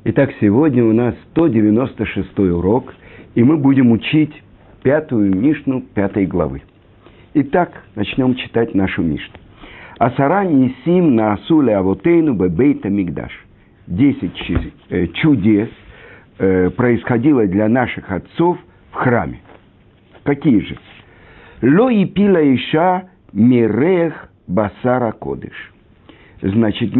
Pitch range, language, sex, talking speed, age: 100-140 Hz, Russian, male, 105 wpm, 50-69